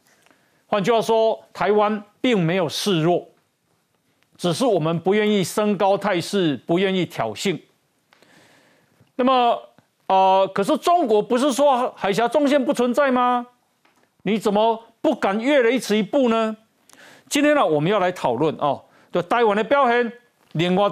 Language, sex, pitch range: Chinese, male, 185-245 Hz